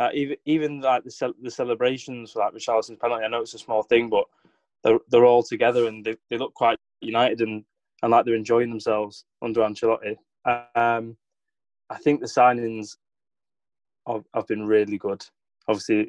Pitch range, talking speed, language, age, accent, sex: 105-120 Hz, 185 wpm, English, 20-39, British, male